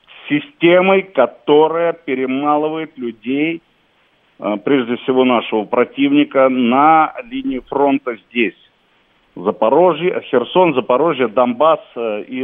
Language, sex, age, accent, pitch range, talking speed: Russian, male, 50-69, native, 120-175 Hz, 80 wpm